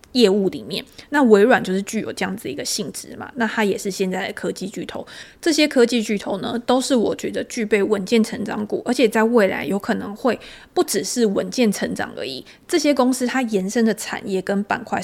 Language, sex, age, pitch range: Chinese, female, 20-39, 200-255 Hz